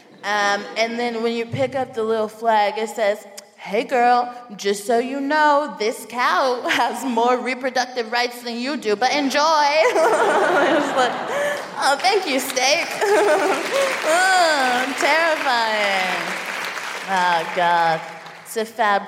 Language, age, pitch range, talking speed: English, 20-39, 195-265 Hz, 130 wpm